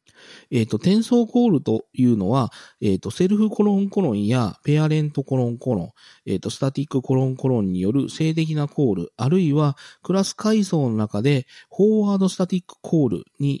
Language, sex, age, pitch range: Japanese, male, 40-59, 120-185 Hz